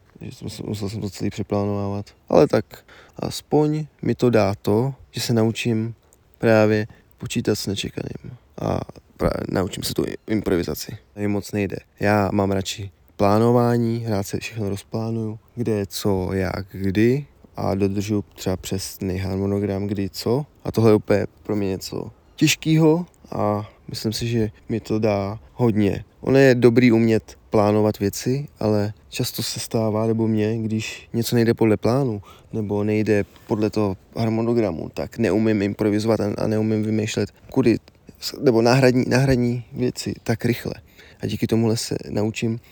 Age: 20-39